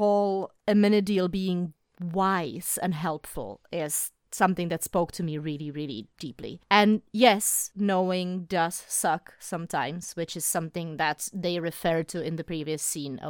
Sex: female